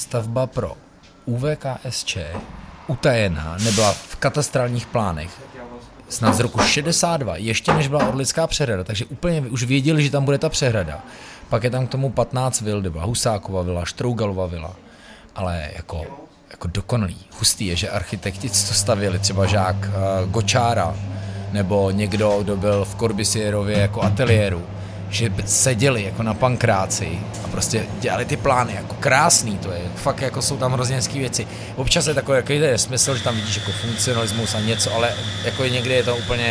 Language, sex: Czech, male